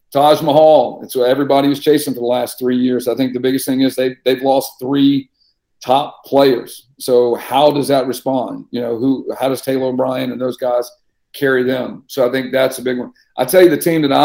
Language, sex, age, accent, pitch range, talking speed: English, male, 50-69, American, 125-140 Hz, 230 wpm